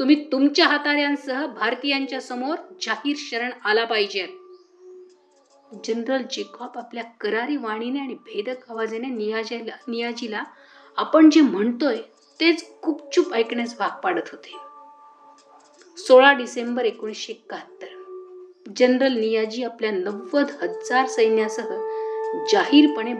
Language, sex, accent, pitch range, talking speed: Marathi, female, native, 235-365 Hz, 90 wpm